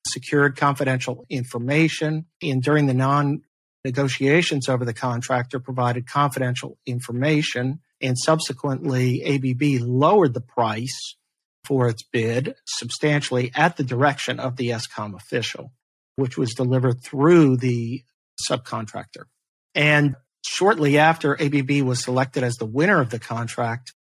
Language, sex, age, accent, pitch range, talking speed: English, male, 50-69, American, 120-145 Hz, 120 wpm